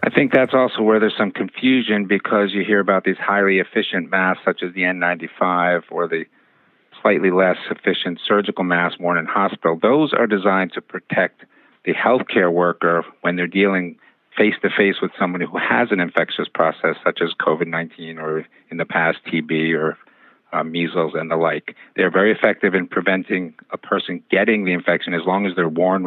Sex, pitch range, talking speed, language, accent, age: male, 85-100 Hz, 180 wpm, English, American, 50-69